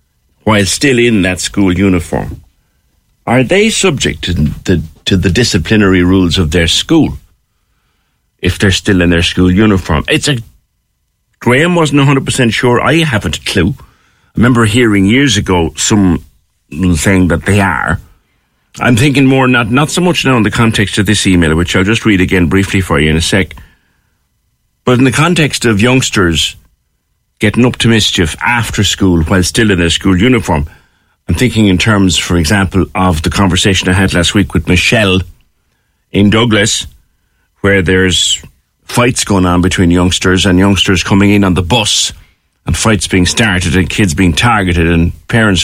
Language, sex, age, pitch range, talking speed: English, male, 60-79, 90-115 Hz, 170 wpm